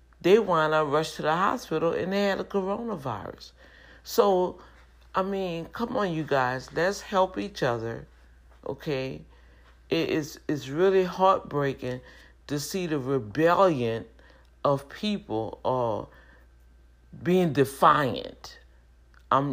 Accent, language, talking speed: American, English, 115 wpm